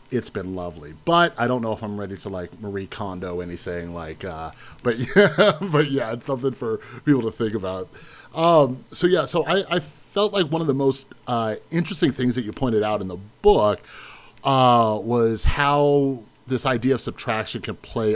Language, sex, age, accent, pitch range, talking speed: English, male, 30-49, American, 105-145 Hz, 195 wpm